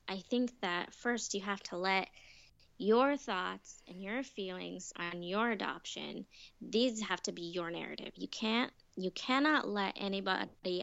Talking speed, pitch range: 155 wpm, 180-210 Hz